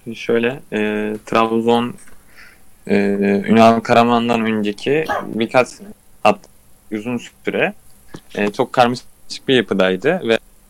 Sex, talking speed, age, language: male, 95 wpm, 20-39, Turkish